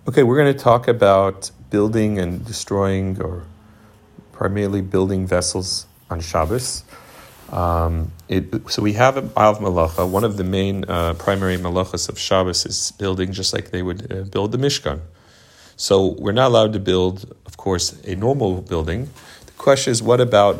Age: 40-59